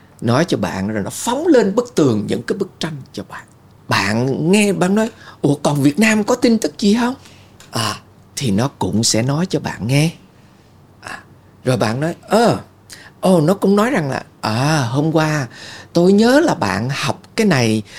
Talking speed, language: 200 wpm, Vietnamese